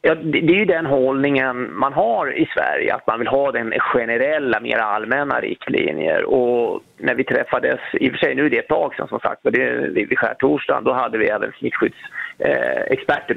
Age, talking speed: 30-49, 200 wpm